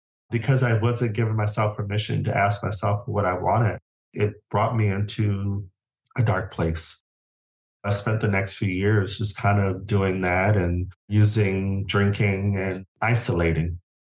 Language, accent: English, American